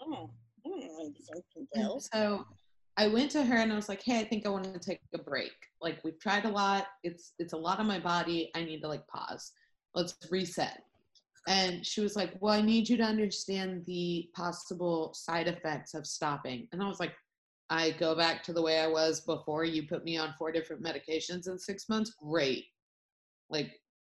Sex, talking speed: female, 195 wpm